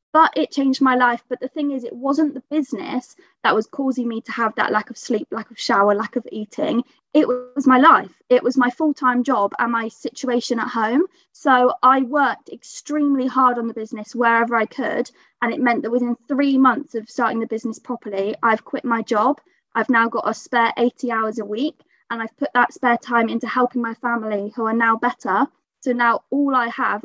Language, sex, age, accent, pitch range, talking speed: English, female, 20-39, British, 225-270 Hz, 215 wpm